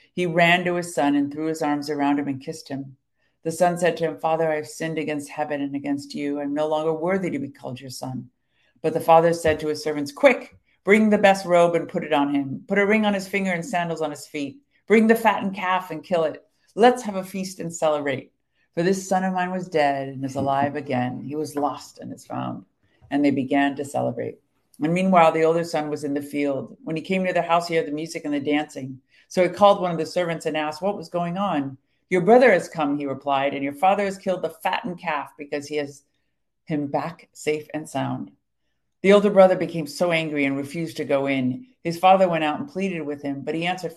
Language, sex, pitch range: English, female, 145-190 Hz